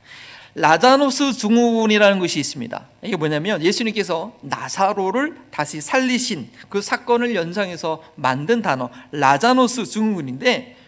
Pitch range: 165-235 Hz